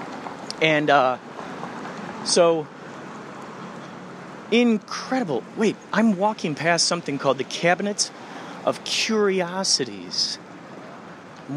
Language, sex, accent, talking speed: English, male, American, 80 wpm